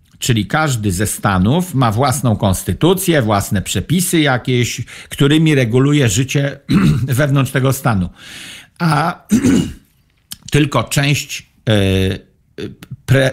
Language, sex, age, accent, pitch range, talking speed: Polish, male, 50-69, native, 110-145 Hz, 90 wpm